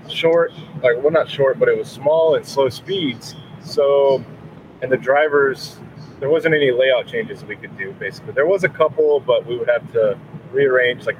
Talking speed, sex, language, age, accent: 195 wpm, male, English, 30-49, American